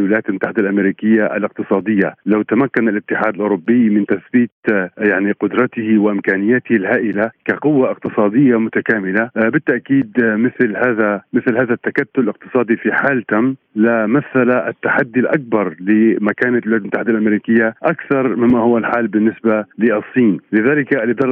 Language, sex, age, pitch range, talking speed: Arabic, male, 40-59, 110-125 Hz, 120 wpm